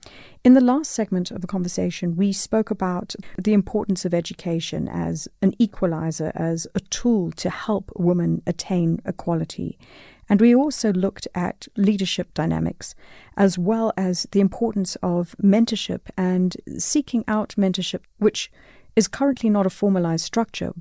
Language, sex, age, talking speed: English, female, 40-59, 145 wpm